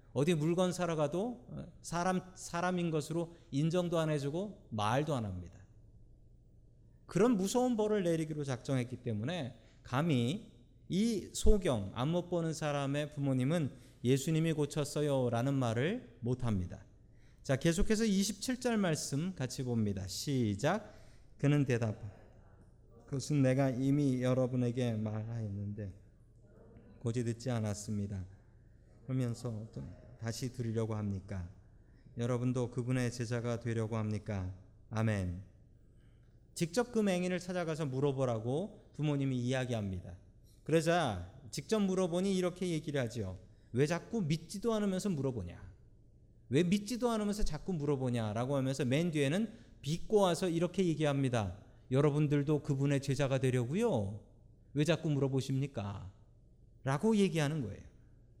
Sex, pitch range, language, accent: male, 115-160 Hz, Korean, native